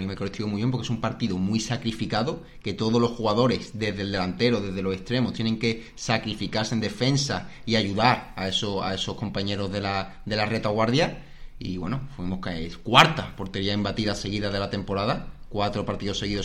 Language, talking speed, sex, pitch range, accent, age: Spanish, 190 wpm, male, 95-120 Hz, Spanish, 30-49